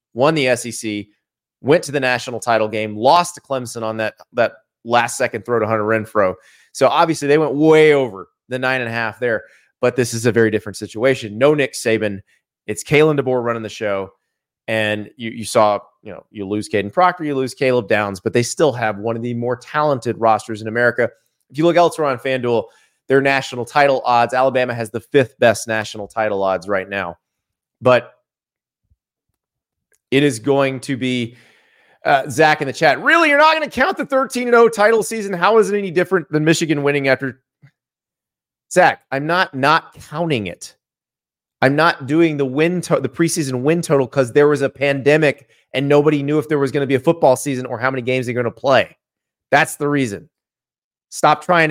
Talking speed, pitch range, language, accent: 195 wpm, 115-150 Hz, English, American